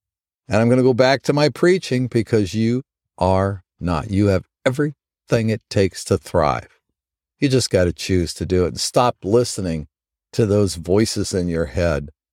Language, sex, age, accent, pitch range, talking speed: English, male, 50-69, American, 95-125 Hz, 180 wpm